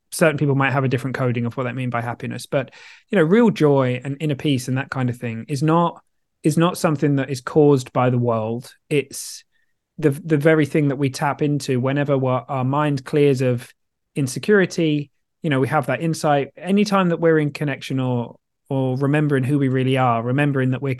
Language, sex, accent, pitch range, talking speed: English, male, British, 130-160 Hz, 210 wpm